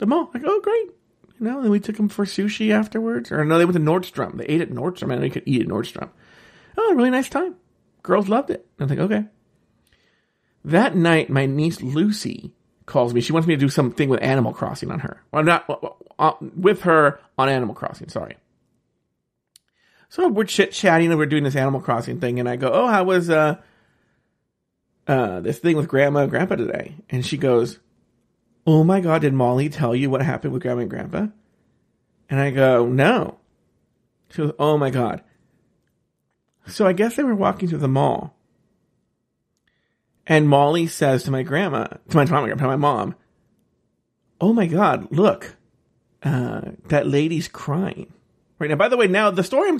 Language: English